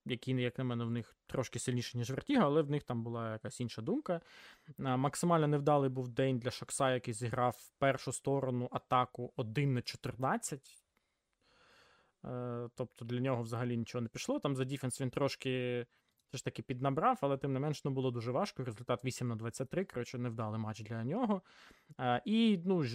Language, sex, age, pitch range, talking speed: Ukrainian, male, 20-39, 125-160 Hz, 180 wpm